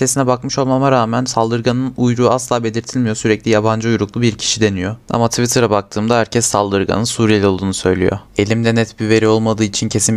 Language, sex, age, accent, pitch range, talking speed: Turkish, male, 20-39, native, 105-125 Hz, 170 wpm